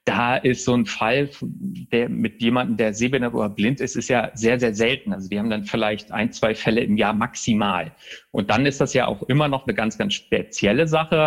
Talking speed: 225 wpm